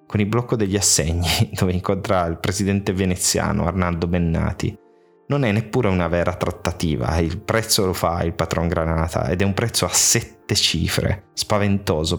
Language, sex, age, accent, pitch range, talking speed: Italian, male, 20-39, native, 85-105 Hz, 165 wpm